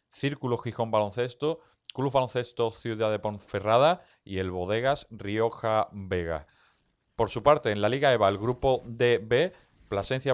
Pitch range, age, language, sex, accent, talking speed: 105-120 Hz, 30-49, Spanish, male, Spanish, 140 wpm